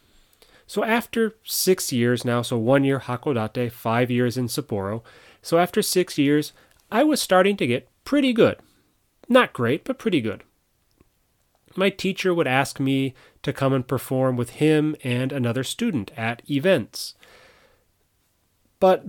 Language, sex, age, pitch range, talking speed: English, male, 30-49, 120-160 Hz, 145 wpm